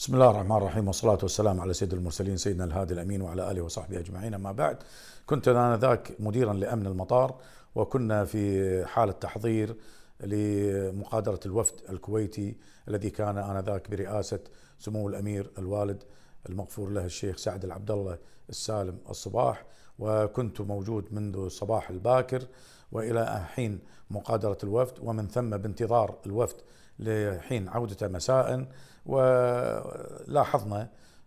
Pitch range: 100-120 Hz